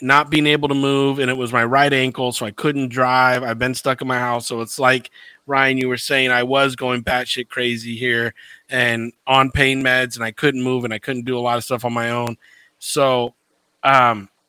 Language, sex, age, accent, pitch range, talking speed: English, male, 30-49, American, 120-135 Hz, 230 wpm